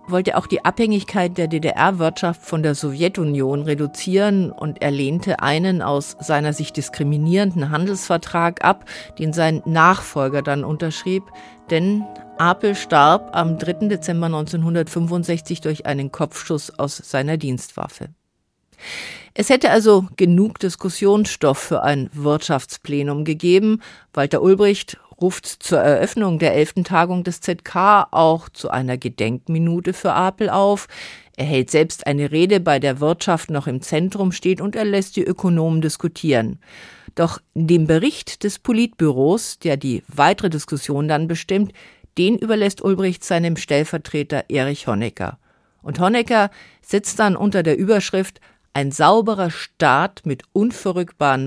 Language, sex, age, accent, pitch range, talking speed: German, female, 50-69, German, 150-190 Hz, 130 wpm